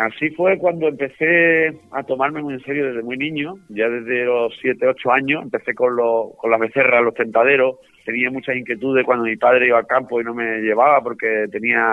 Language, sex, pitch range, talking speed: Spanish, male, 110-135 Hz, 205 wpm